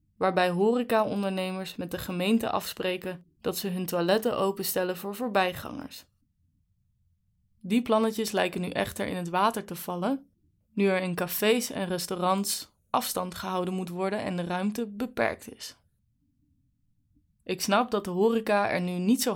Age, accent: 20-39, Dutch